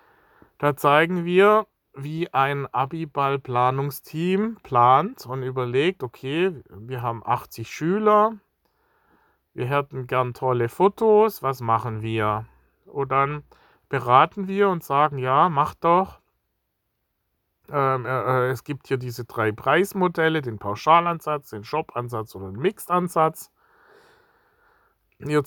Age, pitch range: 40-59, 130-175 Hz